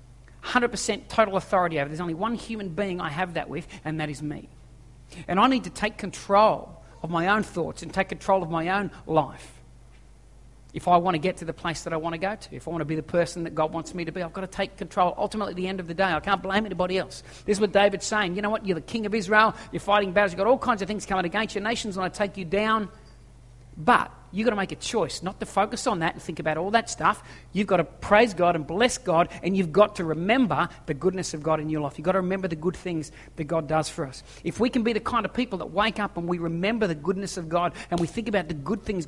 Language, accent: English, Australian